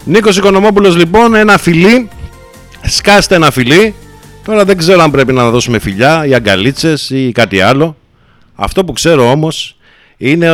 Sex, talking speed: male, 150 wpm